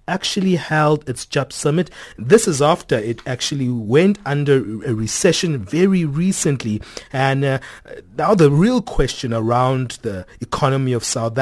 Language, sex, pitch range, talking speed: English, male, 120-150 Hz, 140 wpm